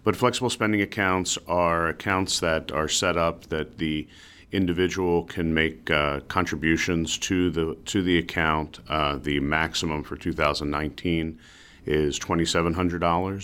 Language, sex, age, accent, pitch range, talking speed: English, male, 40-59, American, 75-90 Hz, 120 wpm